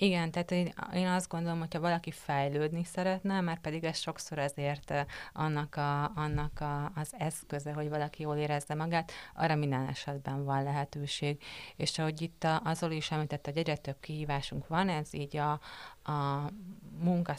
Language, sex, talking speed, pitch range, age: Hungarian, female, 160 wpm, 145-165 Hz, 30-49